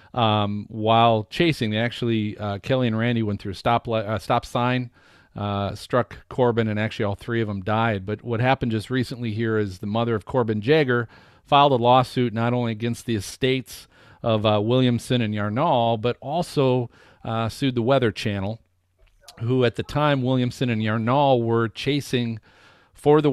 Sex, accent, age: male, American, 40-59